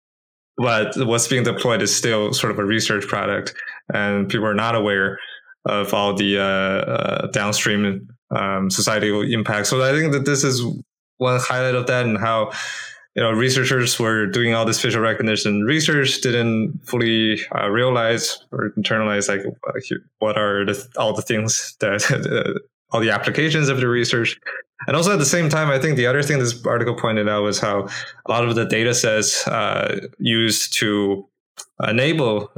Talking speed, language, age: 175 wpm, English, 20-39